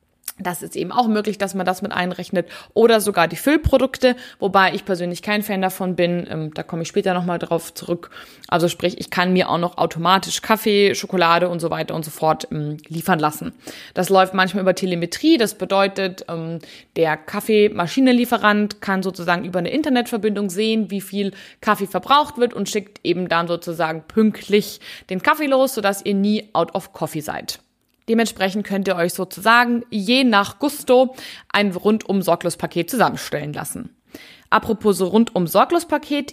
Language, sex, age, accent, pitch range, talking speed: German, female, 20-39, German, 175-230 Hz, 160 wpm